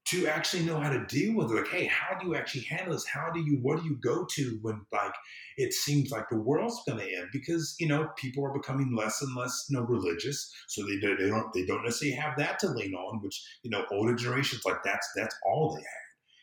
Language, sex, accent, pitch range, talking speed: English, male, American, 110-145 Hz, 250 wpm